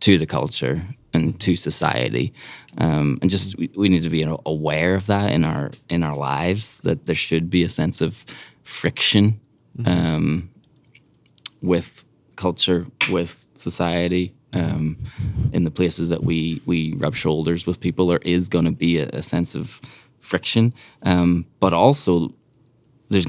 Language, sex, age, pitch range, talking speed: English, male, 20-39, 80-90 Hz, 150 wpm